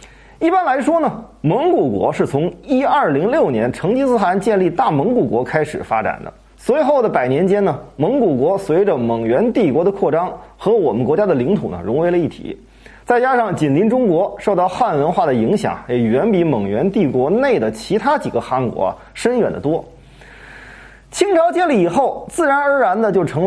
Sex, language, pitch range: male, Chinese, 175-260 Hz